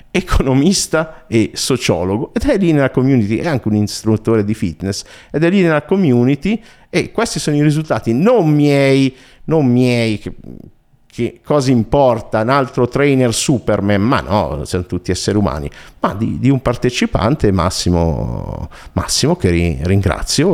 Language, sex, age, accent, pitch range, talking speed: Italian, male, 50-69, native, 85-130 Hz, 145 wpm